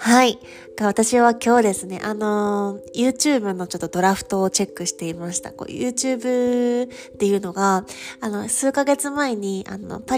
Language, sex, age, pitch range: Japanese, female, 20-39, 185-235 Hz